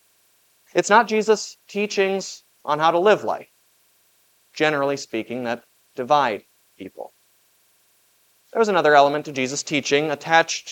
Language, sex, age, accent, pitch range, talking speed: English, male, 30-49, American, 135-185 Hz, 125 wpm